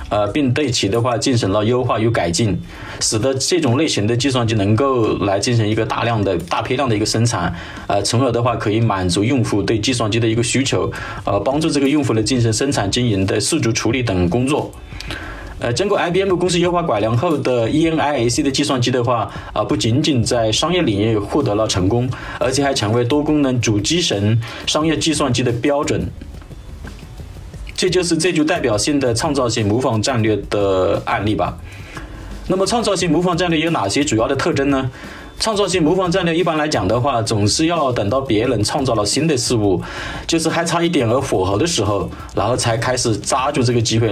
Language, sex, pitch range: Chinese, male, 105-140 Hz